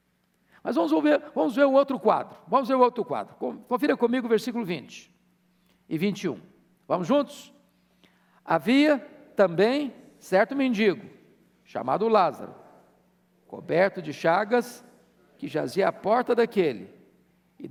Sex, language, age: male, Portuguese, 60-79